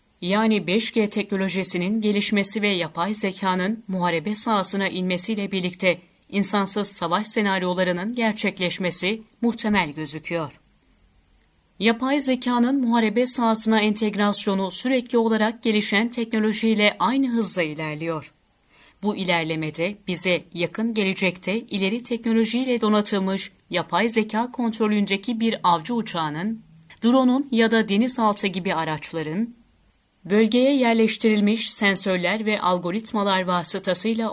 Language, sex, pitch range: Turkish, female, 185-225 Hz